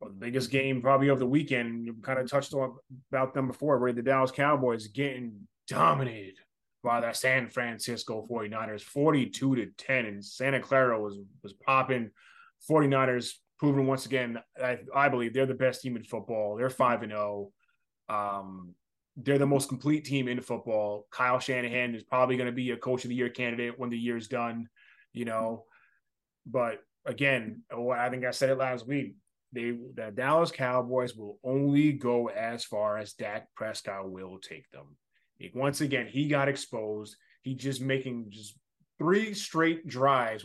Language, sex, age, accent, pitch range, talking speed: English, male, 20-39, American, 120-145 Hz, 170 wpm